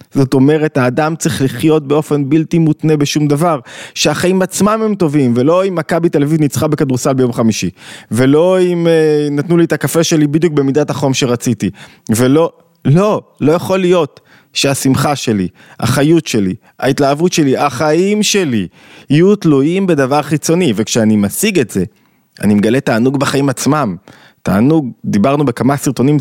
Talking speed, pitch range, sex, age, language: 150 wpm, 115-160 Hz, male, 20-39, Hebrew